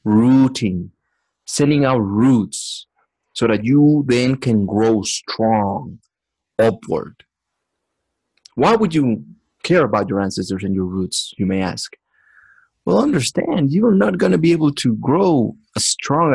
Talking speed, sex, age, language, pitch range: 135 wpm, male, 30-49, English, 100-130 Hz